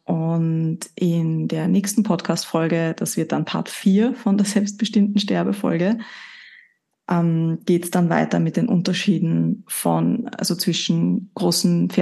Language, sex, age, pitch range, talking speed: German, female, 20-39, 170-210 Hz, 125 wpm